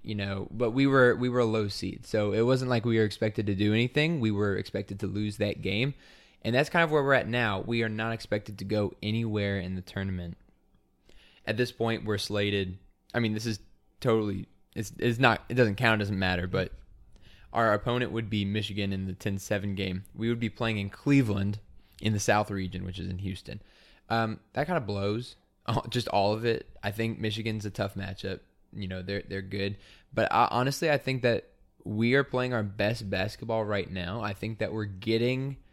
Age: 20-39